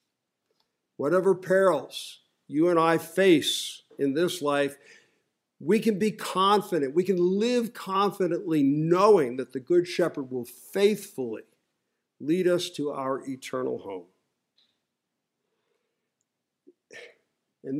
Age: 50-69